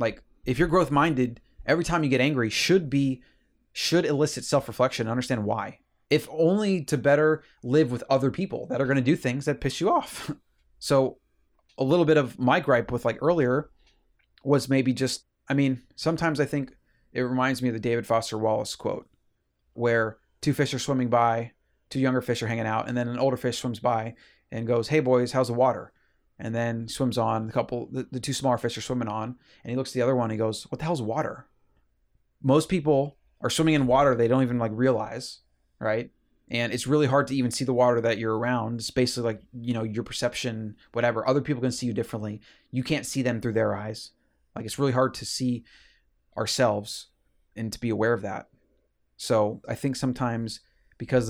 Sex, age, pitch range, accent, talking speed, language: male, 30-49, 115-135 Hz, American, 215 wpm, English